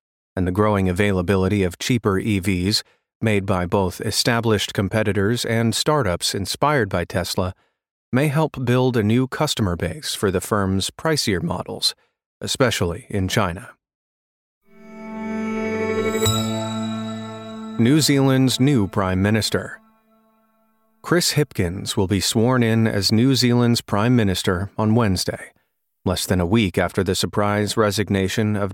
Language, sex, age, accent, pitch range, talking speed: English, male, 40-59, American, 100-125 Hz, 125 wpm